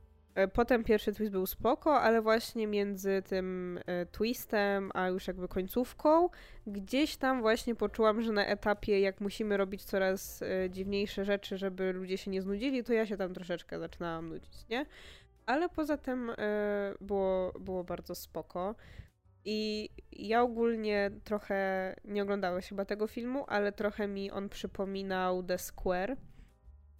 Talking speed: 140 wpm